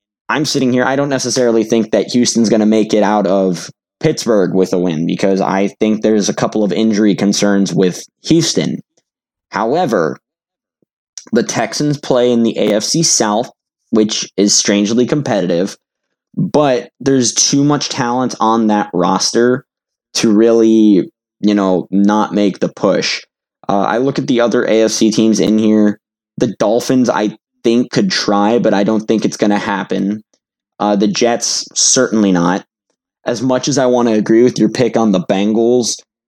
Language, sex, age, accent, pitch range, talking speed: English, male, 10-29, American, 105-120 Hz, 165 wpm